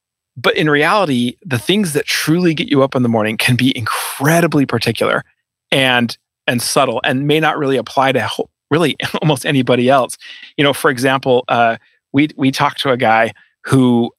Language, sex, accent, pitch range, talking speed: English, male, American, 120-160 Hz, 180 wpm